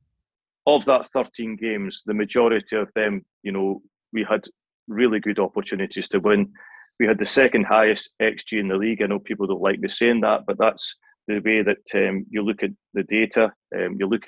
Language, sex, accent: English, male, British